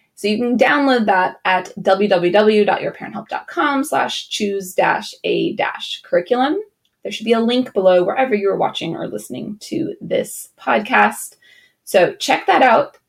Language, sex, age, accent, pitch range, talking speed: English, female, 20-39, American, 210-345 Hz, 140 wpm